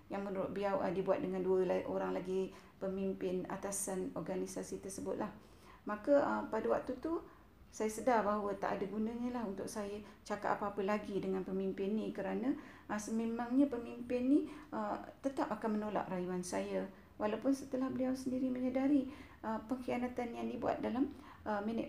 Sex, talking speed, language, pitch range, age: female, 140 wpm, Malay, 190-250 Hz, 40-59